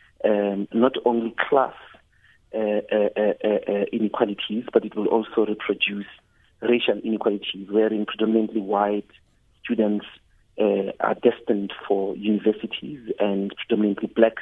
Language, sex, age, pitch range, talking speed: English, male, 40-59, 105-120 Hz, 115 wpm